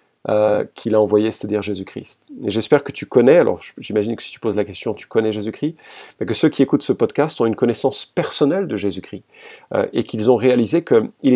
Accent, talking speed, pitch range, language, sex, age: French, 215 wpm, 105-135 Hz, French, male, 40-59